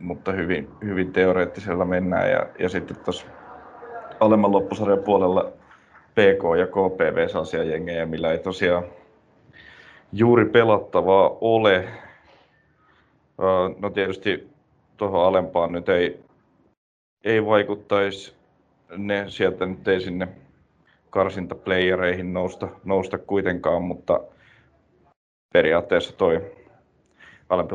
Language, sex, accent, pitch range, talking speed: Finnish, male, native, 90-105 Hz, 90 wpm